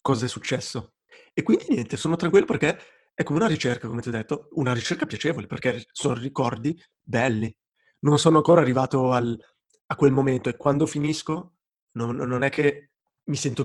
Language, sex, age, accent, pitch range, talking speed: Italian, male, 30-49, native, 125-155 Hz, 180 wpm